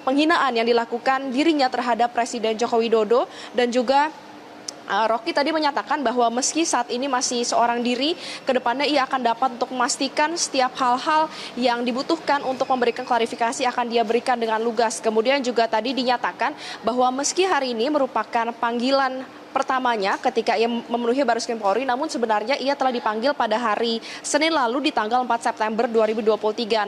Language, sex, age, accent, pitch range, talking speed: Indonesian, female, 20-39, native, 230-270 Hz, 155 wpm